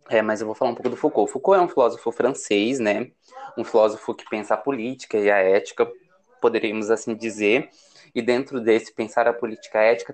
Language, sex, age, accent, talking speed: Portuguese, male, 20-39, Brazilian, 215 wpm